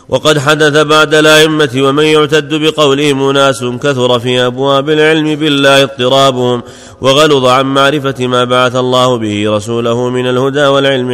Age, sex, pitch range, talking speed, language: 30-49, male, 125-140 Hz, 135 wpm, Arabic